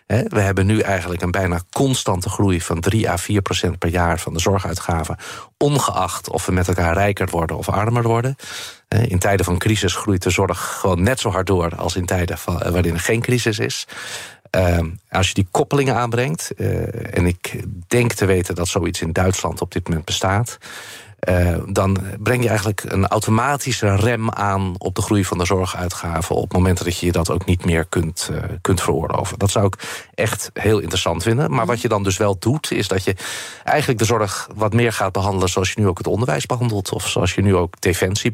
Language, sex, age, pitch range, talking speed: Dutch, male, 40-59, 90-110 Hz, 205 wpm